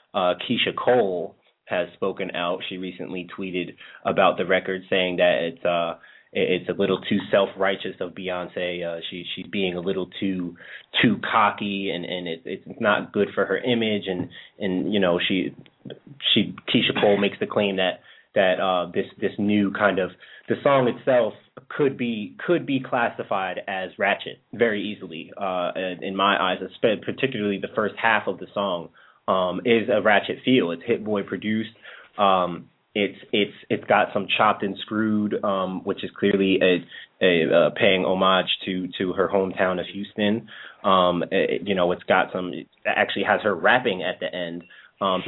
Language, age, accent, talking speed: English, 20-39, American, 175 wpm